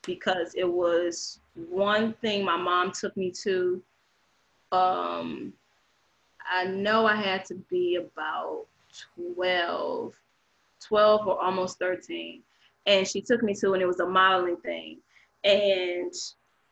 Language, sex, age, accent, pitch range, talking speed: English, female, 20-39, American, 180-210 Hz, 125 wpm